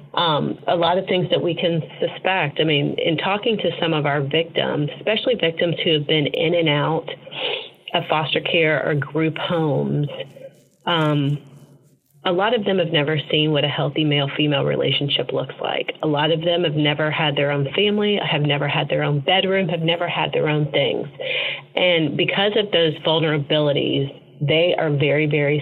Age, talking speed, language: 30-49, 185 wpm, English